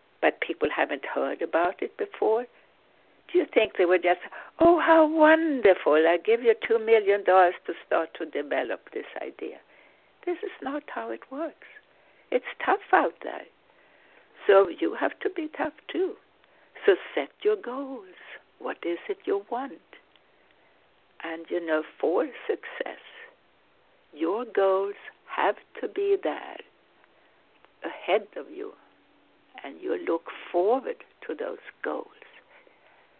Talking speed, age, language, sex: 135 wpm, 60-79, English, female